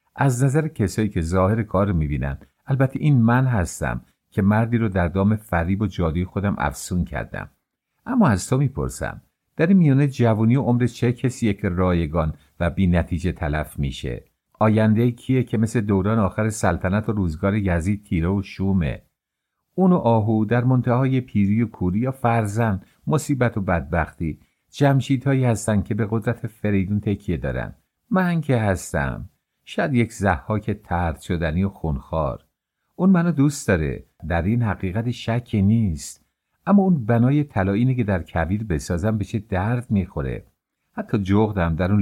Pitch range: 90-115 Hz